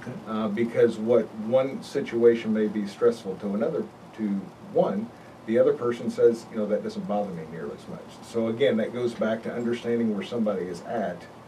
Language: English